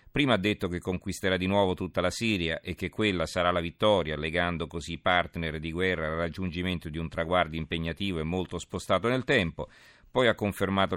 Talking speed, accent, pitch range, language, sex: 195 wpm, native, 80-95 Hz, Italian, male